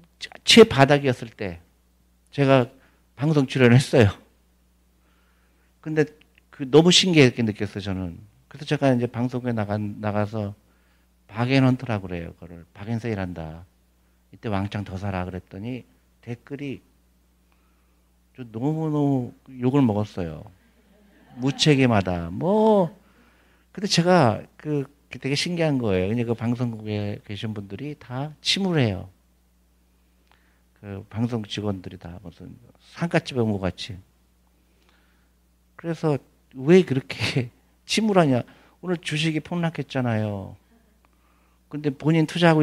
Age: 50-69